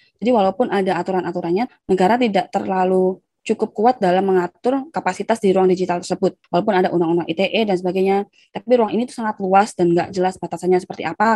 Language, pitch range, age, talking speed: Indonesian, 175-205 Hz, 20-39, 180 wpm